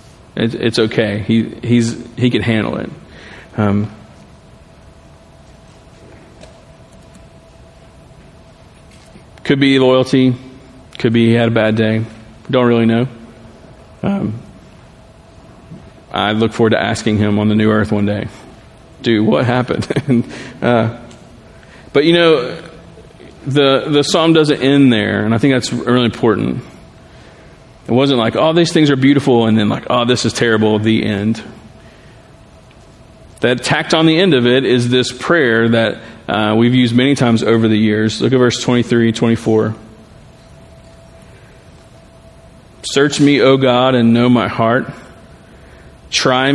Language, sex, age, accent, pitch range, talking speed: English, male, 40-59, American, 110-130 Hz, 135 wpm